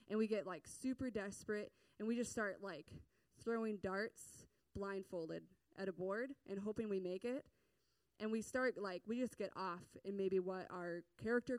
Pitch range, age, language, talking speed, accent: 185-225 Hz, 20-39, English, 180 wpm, American